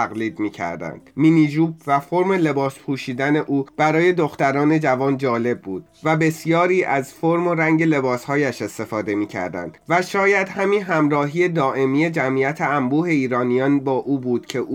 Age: 30-49